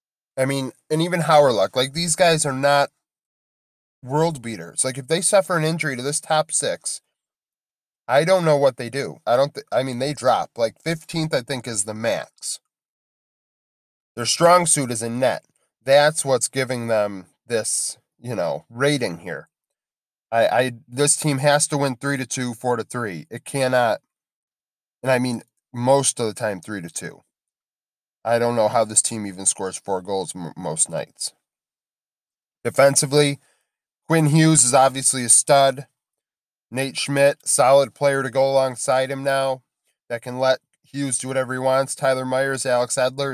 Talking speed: 170 wpm